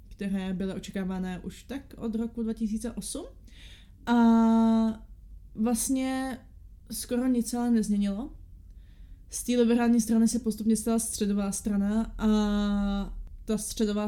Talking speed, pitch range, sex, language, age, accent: 110 wpm, 205-245 Hz, female, Czech, 20-39, native